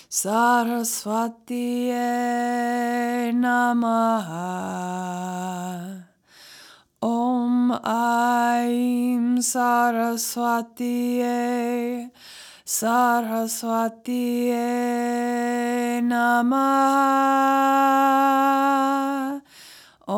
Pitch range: 230-245 Hz